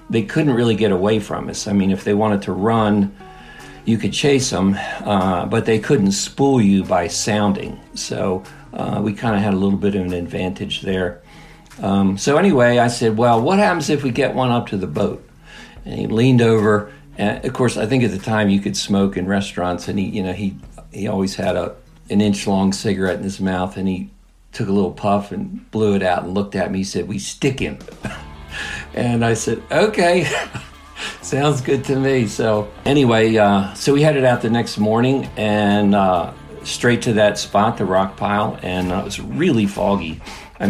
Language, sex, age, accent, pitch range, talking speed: English, male, 50-69, American, 100-120 Hz, 210 wpm